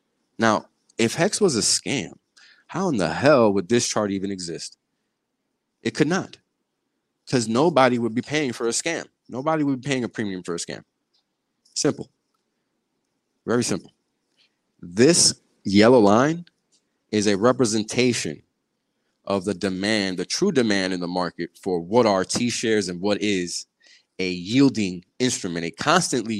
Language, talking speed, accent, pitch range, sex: English, 150 wpm, American, 90-115 Hz, male